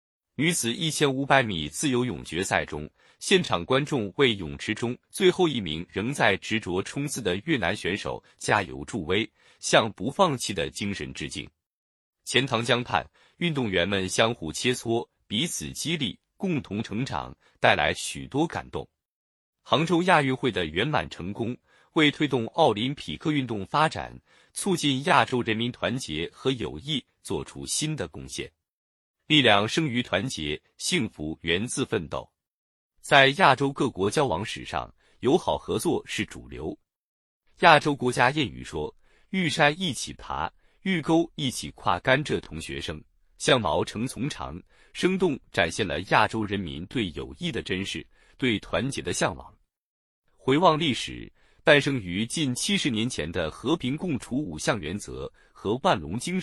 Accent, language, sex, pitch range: native, Chinese, male, 90-145 Hz